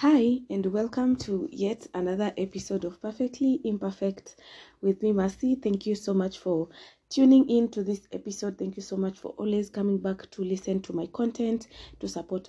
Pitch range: 180-230 Hz